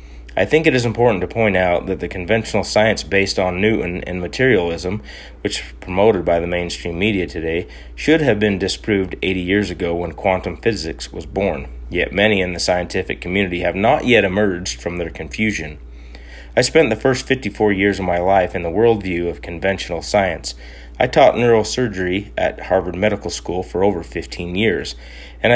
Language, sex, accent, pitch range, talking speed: English, male, American, 85-105 Hz, 180 wpm